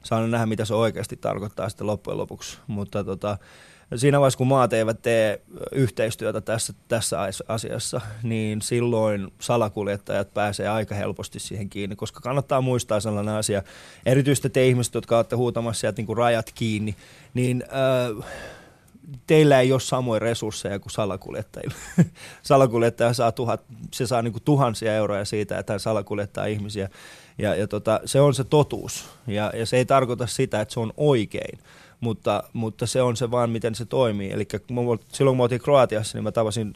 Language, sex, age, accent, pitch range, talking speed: Finnish, male, 20-39, native, 110-125 Hz, 160 wpm